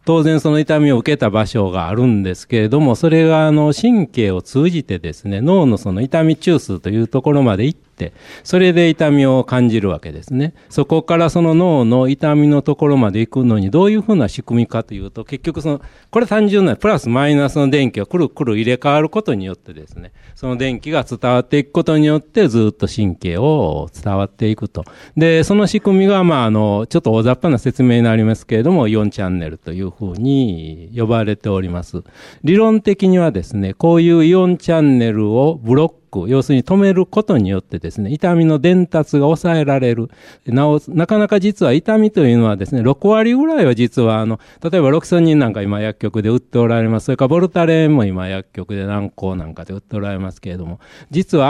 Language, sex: Japanese, male